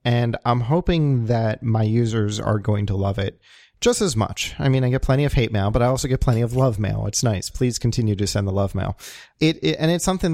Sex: male